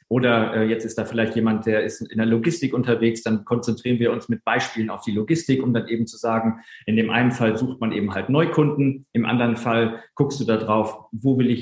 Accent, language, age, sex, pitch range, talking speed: German, German, 40-59, male, 115-145 Hz, 230 wpm